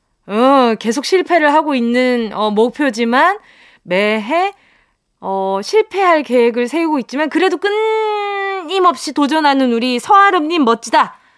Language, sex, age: Korean, female, 20-39